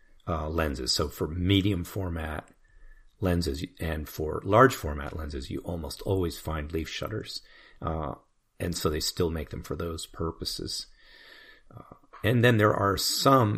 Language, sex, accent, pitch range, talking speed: English, male, American, 75-95 Hz, 150 wpm